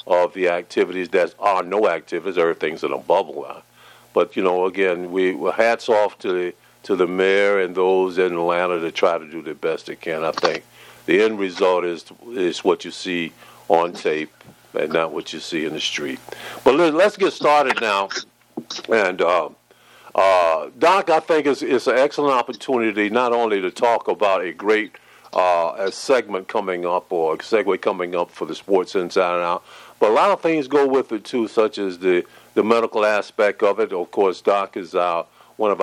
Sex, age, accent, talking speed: male, 50-69, American, 200 wpm